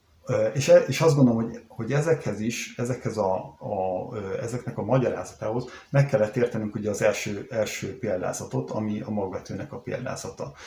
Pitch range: 110-135 Hz